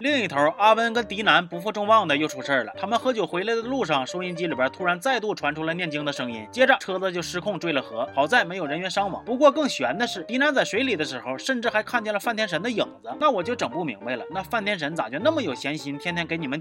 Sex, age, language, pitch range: male, 30-49, Chinese, 175-245 Hz